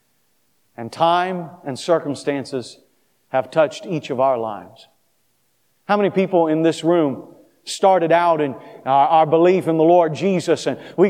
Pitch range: 175-225 Hz